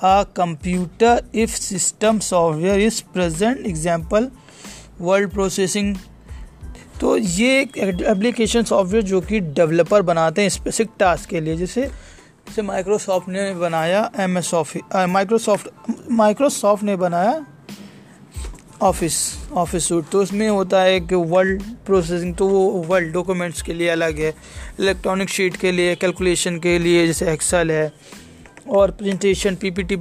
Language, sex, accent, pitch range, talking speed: Hindi, male, native, 175-200 Hz, 130 wpm